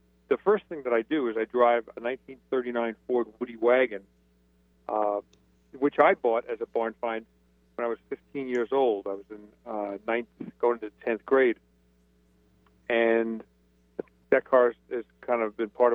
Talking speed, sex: 170 wpm, male